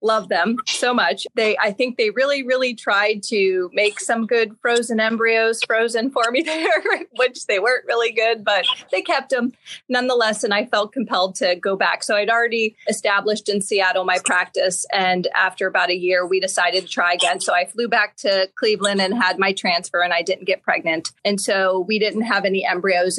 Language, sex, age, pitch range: English, female, 30-49, 190-235 Hz